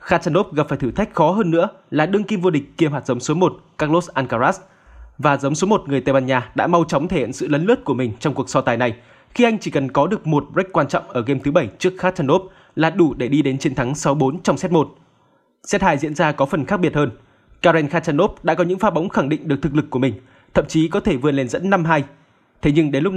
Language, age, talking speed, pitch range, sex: Vietnamese, 20-39, 270 wpm, 140-185 Hz, male